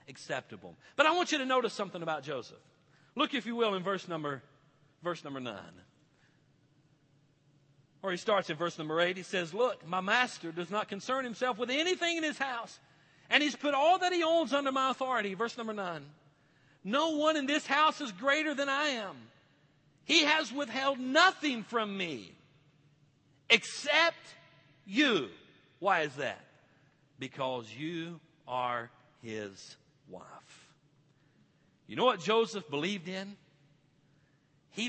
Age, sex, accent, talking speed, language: 50-69, male, American, 150 wpm, English